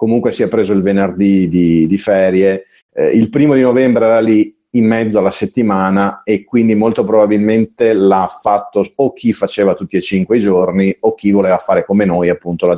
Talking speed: 195 wpm